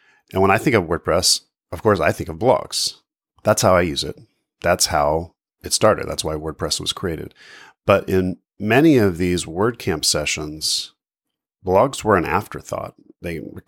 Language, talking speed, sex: English, 170 wpm, male